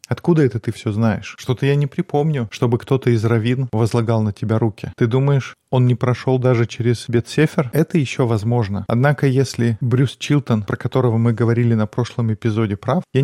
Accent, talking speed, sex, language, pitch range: native, 185 wpm, male, Russian, 115-135 Hz